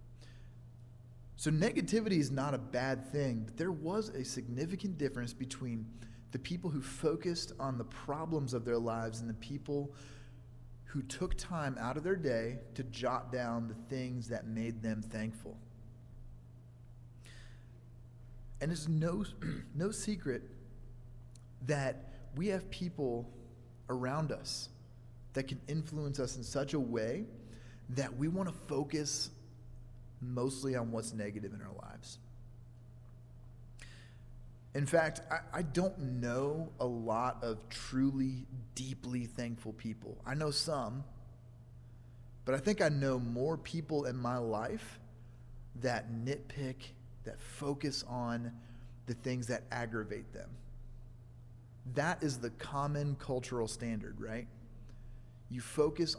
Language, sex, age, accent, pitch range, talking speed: English, male, 30-49, American, 120-135 Hz, 125 wpm